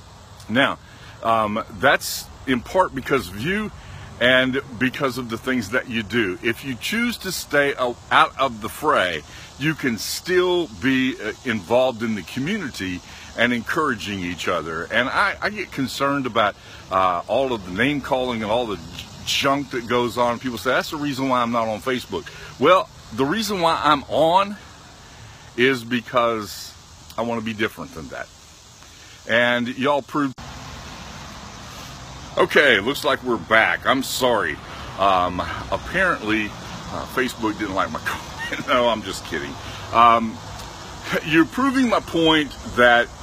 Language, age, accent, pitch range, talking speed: English, 50-69, American, 110-135 Hz, 150 wpm